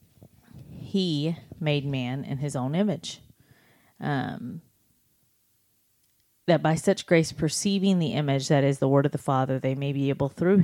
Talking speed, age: 150 wpm, 30-49